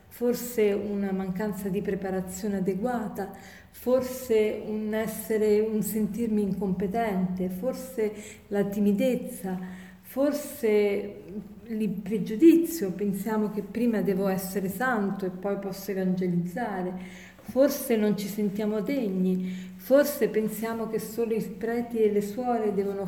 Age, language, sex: 40-59, Italian, female